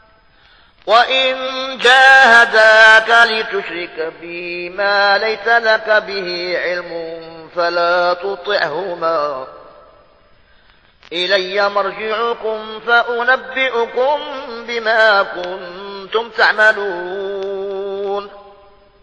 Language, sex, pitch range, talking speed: Arabic, male, 200-235 Hz, 50 wpm